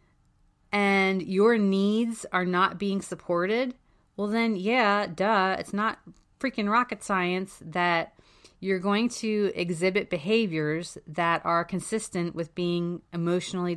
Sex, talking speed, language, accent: female, 120 wpm, English, American